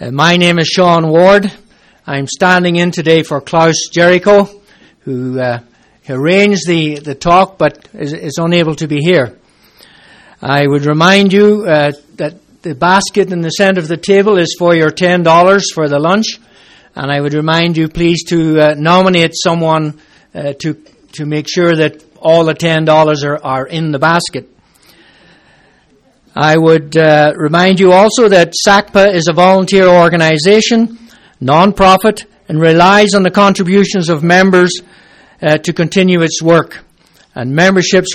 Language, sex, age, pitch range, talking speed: English, male, 60-79, 155-190 Hz, 155 wpm